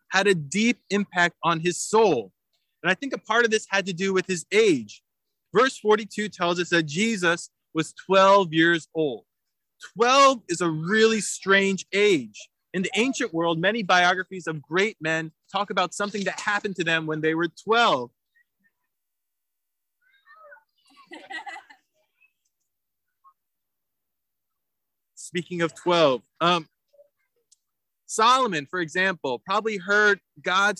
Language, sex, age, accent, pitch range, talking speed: English, male, 20-39, American, 175-220 Hz, 130 wpm